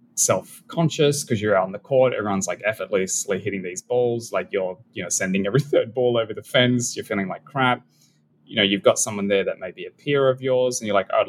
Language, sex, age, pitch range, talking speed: English, male, 20-39, 100-130 Hz, 240 wpm